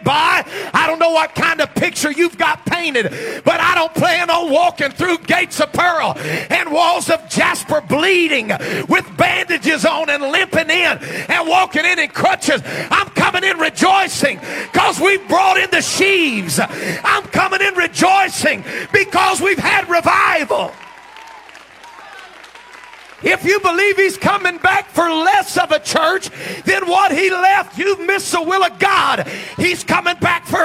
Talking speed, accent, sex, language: 155 wpm, American, male, English